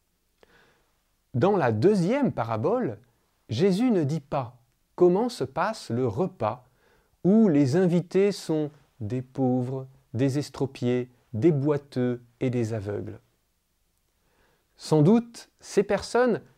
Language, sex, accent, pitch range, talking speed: French, male, French, 120-160 Hz, 110 wpm